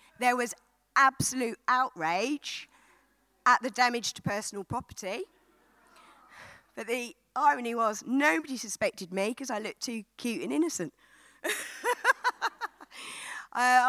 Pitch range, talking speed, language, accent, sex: 200-270 Hz, 110 wpm, English, British, female